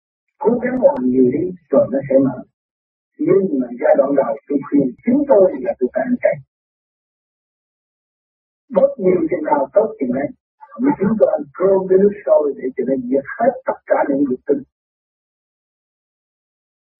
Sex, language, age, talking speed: male, Vietnamese, 50-69, 160 wpm